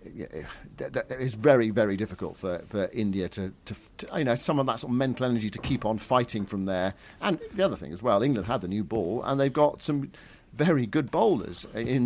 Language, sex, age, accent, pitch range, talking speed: English, male, 50-69, British, 105-130 Hz, 225 wpm